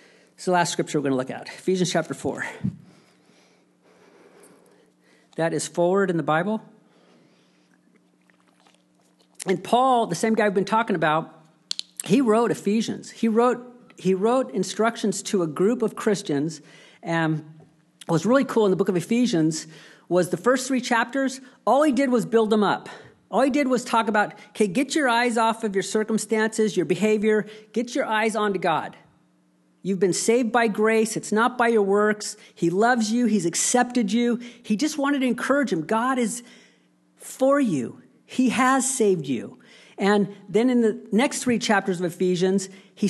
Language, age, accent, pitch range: English, 50-69, American, 170-230 Hz